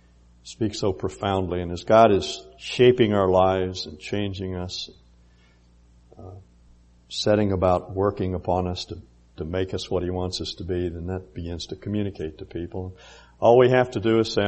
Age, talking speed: 60-79, 180 wpm